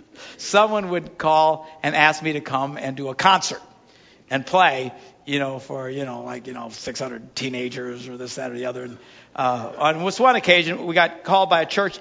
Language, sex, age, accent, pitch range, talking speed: English, male, 60-79, American, 135-165 Hz, 210 wpm